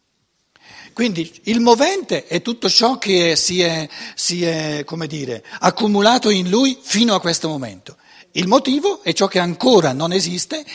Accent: native